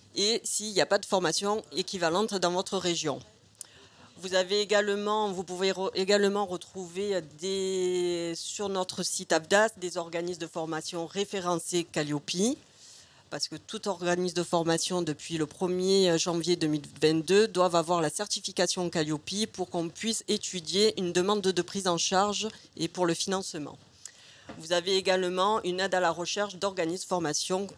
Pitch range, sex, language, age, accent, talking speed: 165-200 Hz, female, French, 40-59, French, 150 wpm